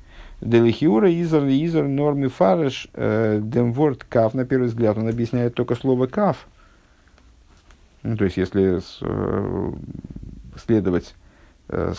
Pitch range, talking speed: 95-120 Hz, 100 wpm